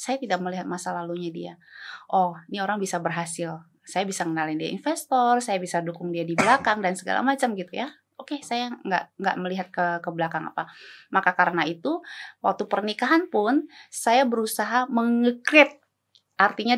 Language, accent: Indonesian, native